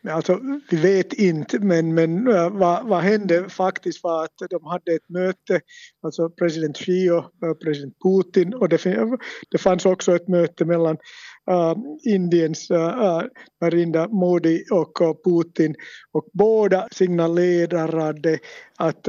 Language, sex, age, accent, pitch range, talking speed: Swedish, male, 50-69, Finnish, 160-185 Hz, 140 wpm